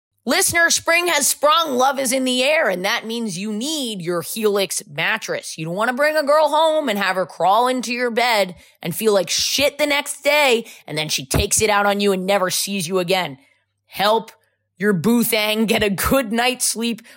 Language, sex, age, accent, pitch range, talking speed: English, female, 20-39, American, 185-245 Hz, 210 wpm